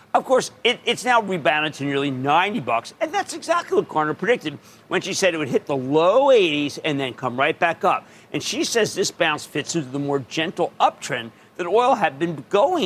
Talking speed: 215 wpm